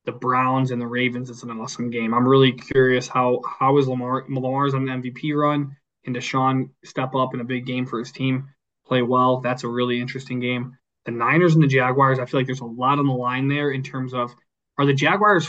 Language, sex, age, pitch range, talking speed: English, male, 20-39, 125-140 Hz, 225 wpm